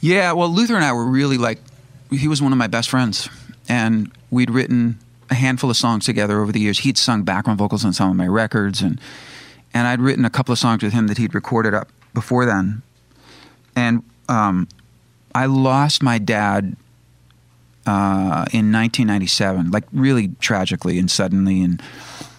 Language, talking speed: English, 175 wpm